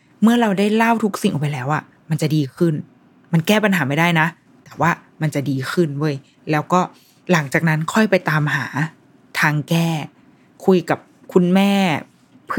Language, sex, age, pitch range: Thai, female, 20-39, 155-185 Hz